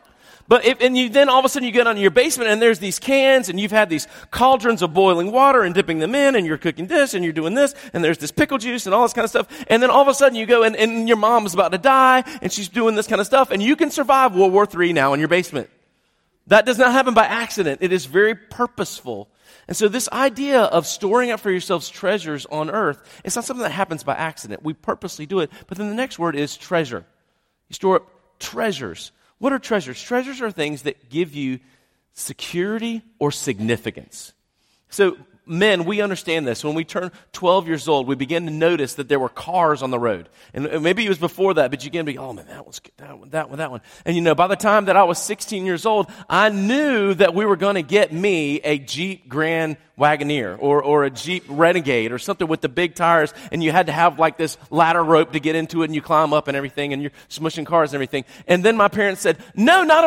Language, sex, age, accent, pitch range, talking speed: English, male, 40-59, American, 155-220 Hz, 250 wpm